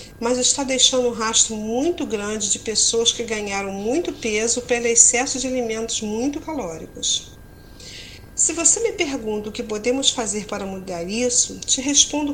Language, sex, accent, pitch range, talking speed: Portuguese, female, Brazilian, 210-270 Hz, 155 wpm